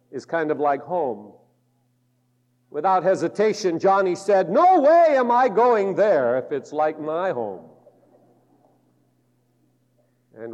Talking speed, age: 120 wpm, 50-69